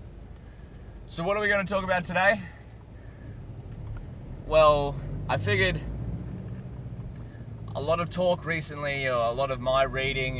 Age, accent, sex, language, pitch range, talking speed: 20-39, Australian, male, English, 110-140 Hz, 135 wpm